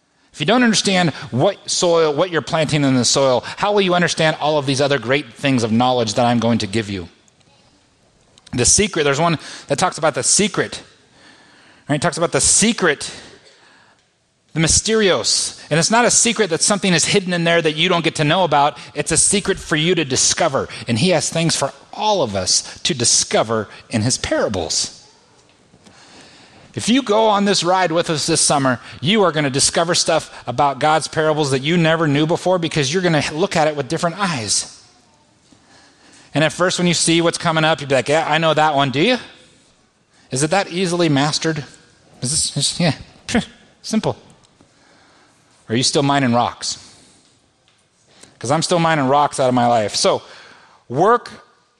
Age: 30-49